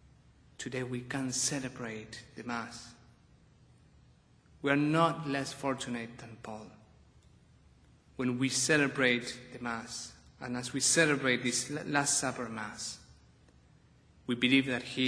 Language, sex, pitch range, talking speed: English, male, 115-140 Hz, 120 wpm